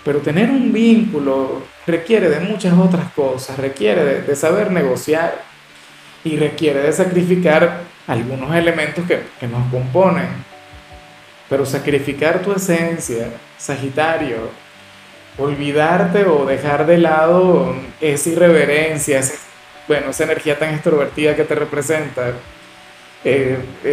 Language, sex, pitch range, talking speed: Spanish, male, 135-170 Hz, 115 wpm